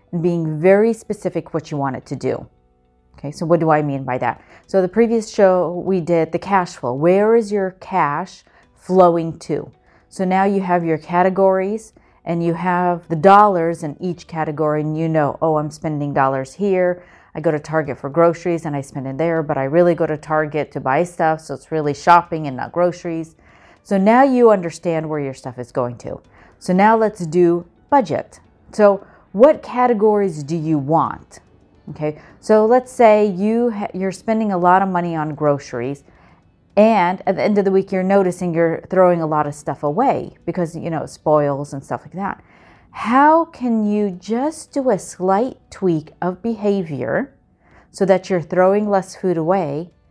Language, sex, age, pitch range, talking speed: English, female, 40-59, 155-195 Hz, 190 wpm